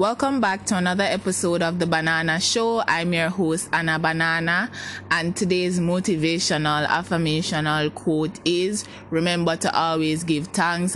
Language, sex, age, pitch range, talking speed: English, female, 20-39, 155-185 Hz, 135 wpm